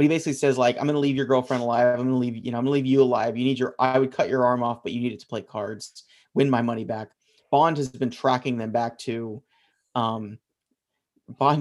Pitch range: 120-140 Hz